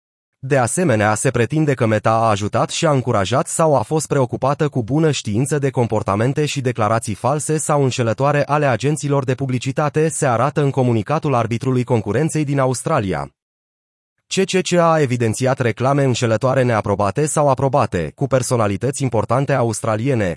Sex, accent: male, native